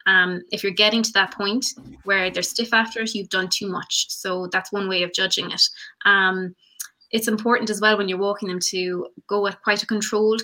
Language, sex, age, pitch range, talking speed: English, female, 20-39, 185-205 Hz, 215 wpm